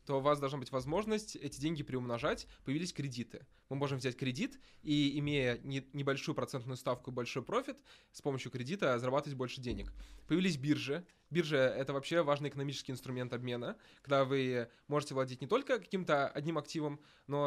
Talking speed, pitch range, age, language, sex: 170 wpm, 130-155 Hz, 20-39, Russian, male